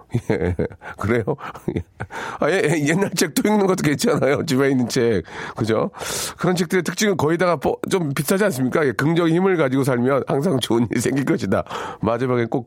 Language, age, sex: Korean, 40-59, male